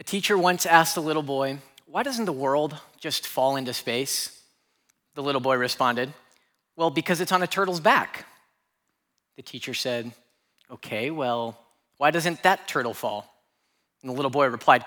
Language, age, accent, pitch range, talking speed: English, 30-49, American, 135-185 Hz, 165 wpm